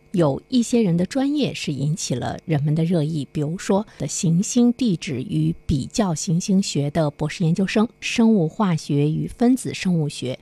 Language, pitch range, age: Chinese, 150-205 Hz, 50-69